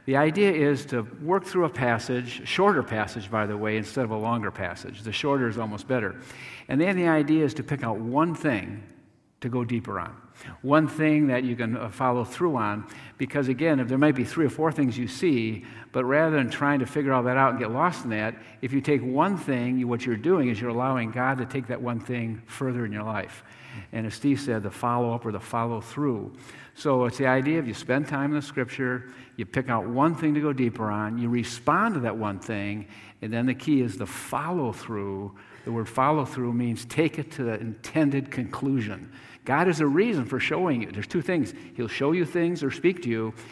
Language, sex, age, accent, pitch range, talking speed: English, male, 50-69, American, 115-140 Hz, 225 wpm